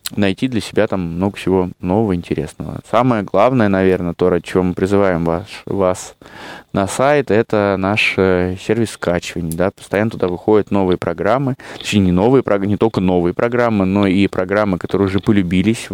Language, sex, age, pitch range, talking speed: Russian, male, 20-39, 90-105 Hz, 165 wpm